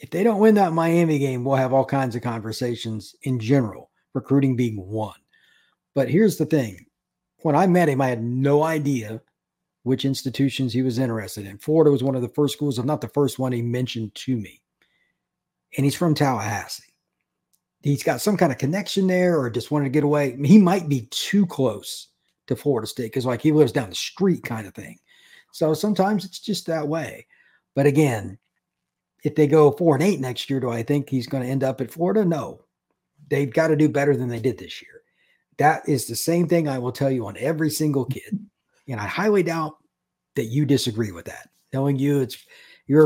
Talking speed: 210 wpm